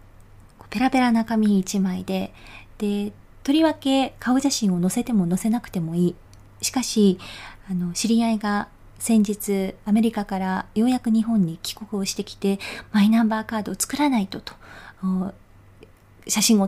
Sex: female